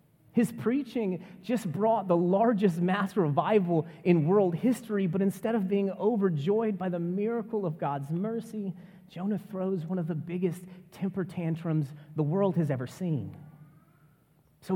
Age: 30-49